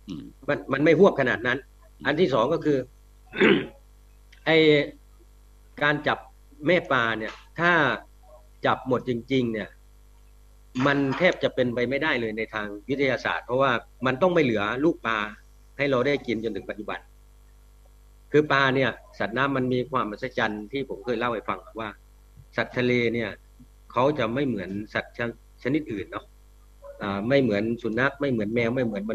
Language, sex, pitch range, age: English, male, 115-140 Hz, 60-79